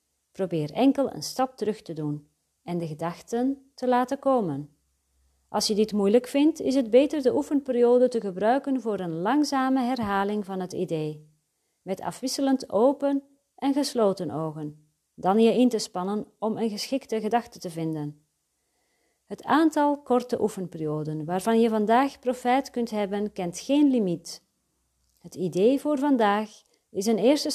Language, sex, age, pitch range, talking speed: Dutch, female, 40-59, 170-250 Hz, 150 wpm